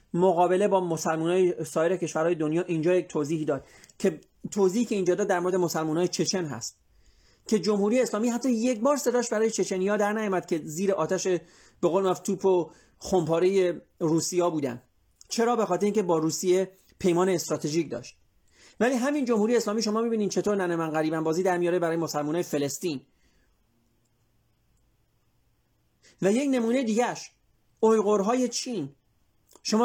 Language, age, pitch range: Persian, 30-49, 165-220 Hz